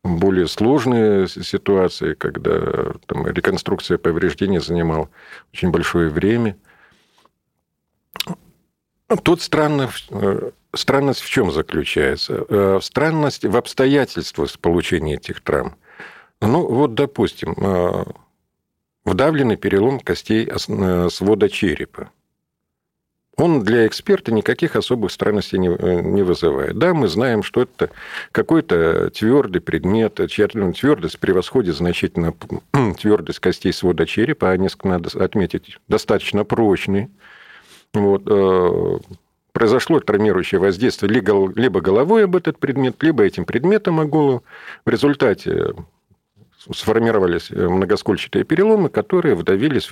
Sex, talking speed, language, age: male, 100 wpm, Russian, 50-69